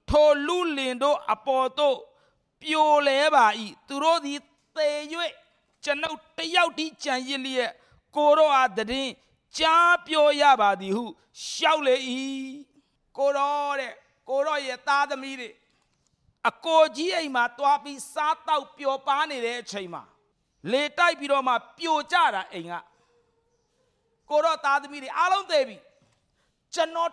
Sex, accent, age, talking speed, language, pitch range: male, Indian, 50-69, 95 wpm, English, 260-320 Hz